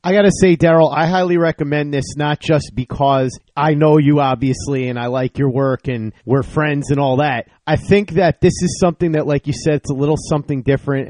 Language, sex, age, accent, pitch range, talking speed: English, male, 30-49, American, 135-170 Hz, 225 wpm